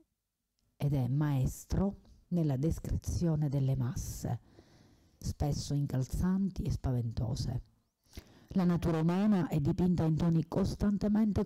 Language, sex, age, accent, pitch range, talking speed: Italian, female, 40-59, native, 135-175 Hz, 100 wpm